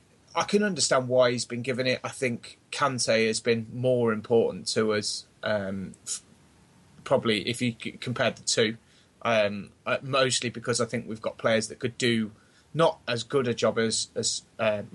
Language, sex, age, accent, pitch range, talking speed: English, male, 20-39, British, 105-120 Hz, 185 wpm